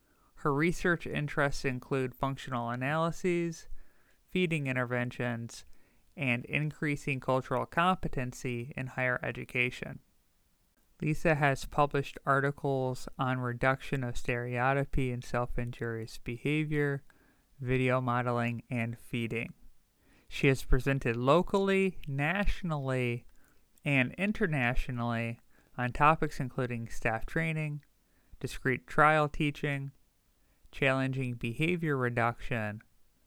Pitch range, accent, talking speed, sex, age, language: 120-145 Hz, American, 85 wpm, male, 30-49, English